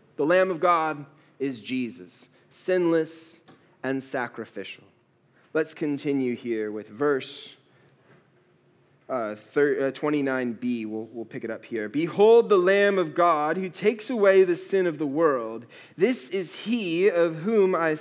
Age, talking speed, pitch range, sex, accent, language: 20-39, 140 wpm, 130-185 Hz, male, American, English